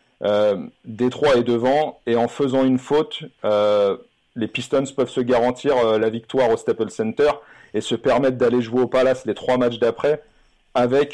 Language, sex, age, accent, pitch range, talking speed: French, male, 40-59, French, 115-135 Hz, 180 wpm